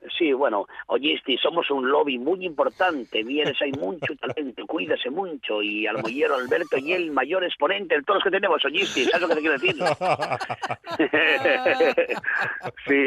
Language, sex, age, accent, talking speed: Spanish, male, 50-69, Spanish, 160 wpm